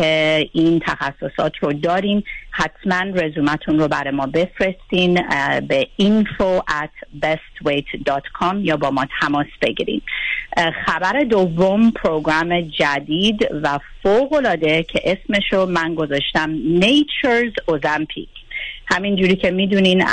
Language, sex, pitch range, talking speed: Persian, female, 150-185 Hz, 100 wpm